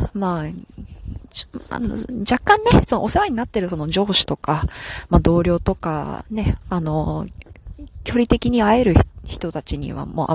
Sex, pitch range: female, 135-190 Hz